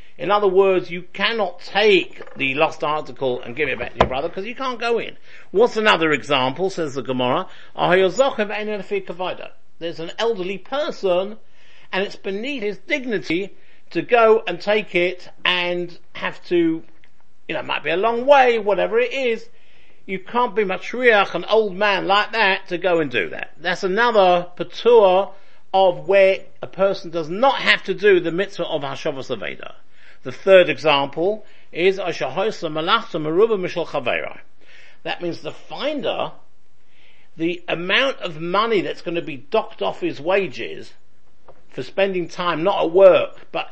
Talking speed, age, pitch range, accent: 155 wpm, 50-69, 170-210 Hz, British